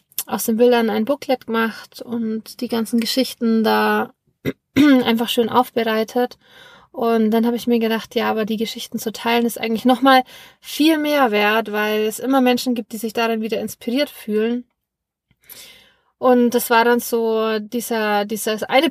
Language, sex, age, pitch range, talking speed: German, female, 20-39, 220-250 Hz, 160 wpm